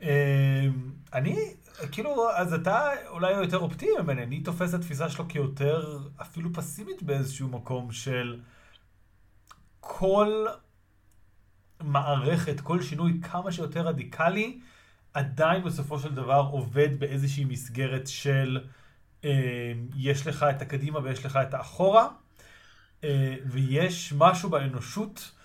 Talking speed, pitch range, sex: 115 wpm, 135-165 Hz, male